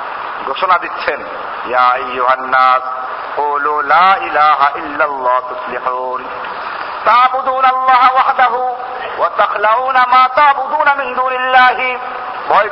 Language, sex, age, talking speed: Bengali, male, 50-69, 85 wpm